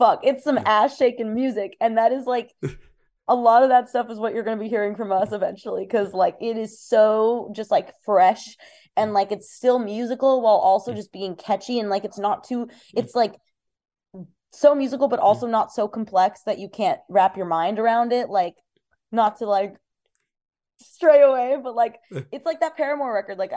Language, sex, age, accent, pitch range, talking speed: English, female, 20-39, American, 190-235 Hz, 200 wpm